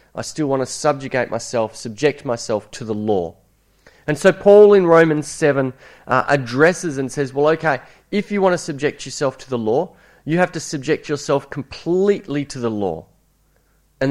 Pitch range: 120-165 Hz